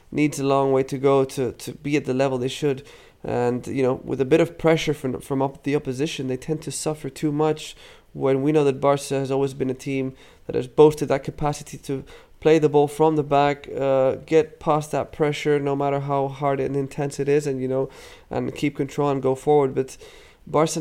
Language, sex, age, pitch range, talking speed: English, male, 20-39, 135-150 Hz, 230 wpm